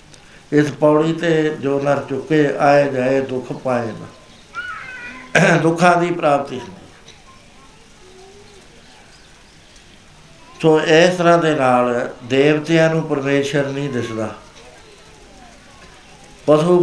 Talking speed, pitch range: 85 wpm, 140-170 Hz